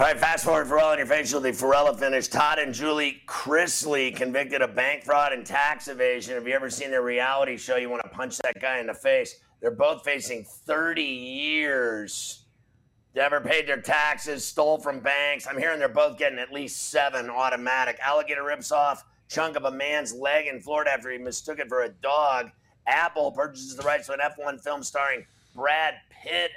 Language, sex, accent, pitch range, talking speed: English, male, American, 130-160 Hz, 200 wpm